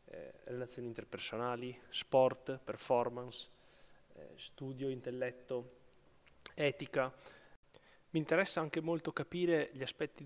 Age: 30-49